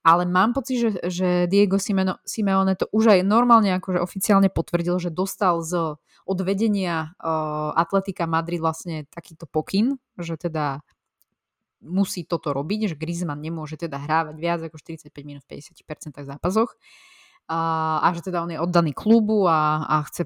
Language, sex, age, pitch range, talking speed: Slovak, female, 20-39, 160-195 Hz, 140 wpm